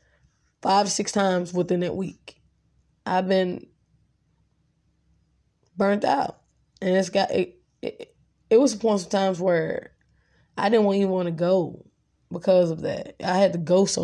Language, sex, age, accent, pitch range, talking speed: English, female, 20-39, American, 180-200 Hz, 155 wpm